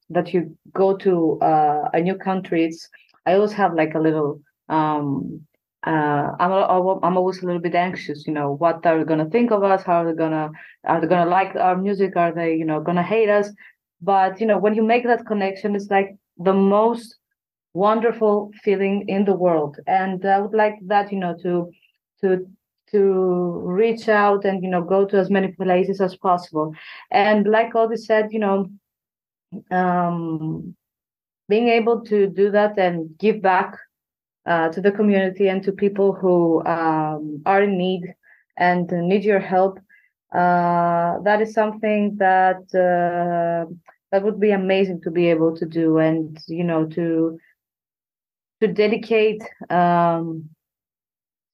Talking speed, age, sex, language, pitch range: 165 wpm, 30-49, female, English, 170-205 Hz